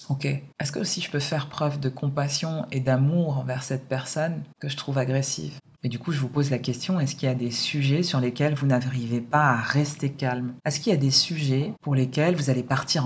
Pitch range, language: 135-160 Hz, French